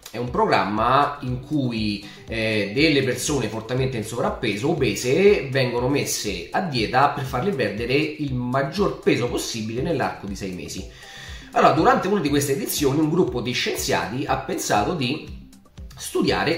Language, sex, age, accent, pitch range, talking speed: Italian, male, 30-49, native, 110-145 Hz, 150 wpm